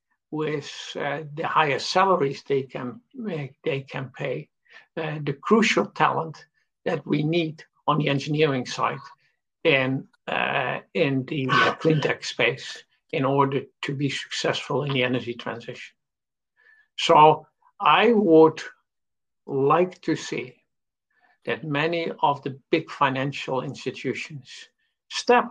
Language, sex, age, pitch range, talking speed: English, male, 60-79, 135-165 Hz, 125 wpm